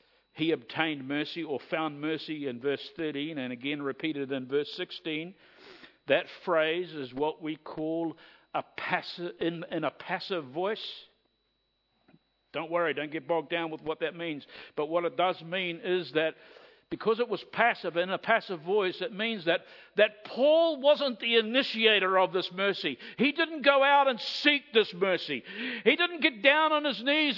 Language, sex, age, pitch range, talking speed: English, male, 60-79, 165-270 Hz, 175 wpm